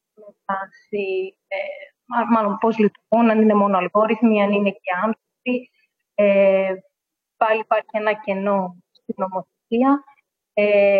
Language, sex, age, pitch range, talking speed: Greek, female, 20-39, 200-230 Hz, 105 wpm